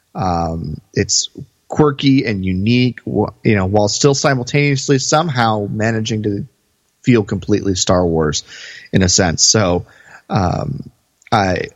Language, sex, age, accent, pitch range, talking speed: English, male, 20-39, American, 90-115 Hz, 115 wpm